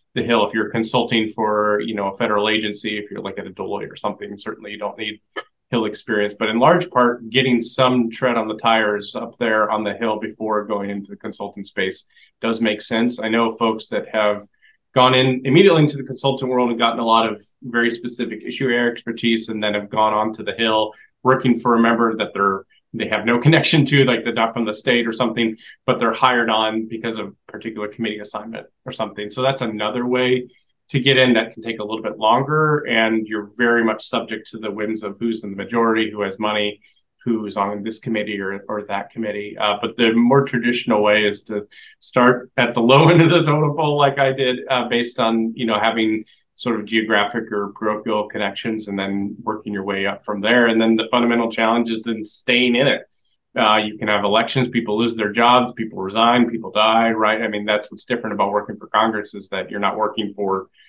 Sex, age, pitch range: male, 30-49, 105-120 Hz